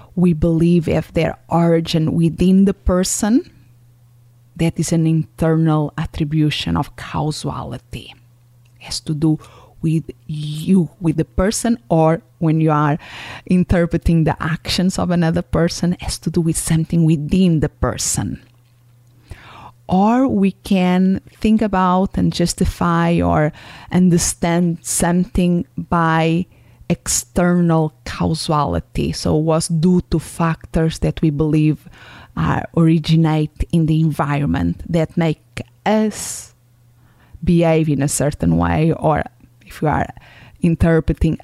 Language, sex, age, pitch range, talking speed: English, female, 30-49, 135-170 Hz, 120 wpm